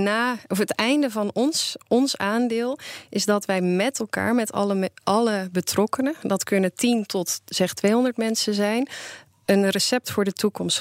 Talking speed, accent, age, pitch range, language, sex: 170 wpm, Dutch, 20-39, 180-220 Hz, Dutch, female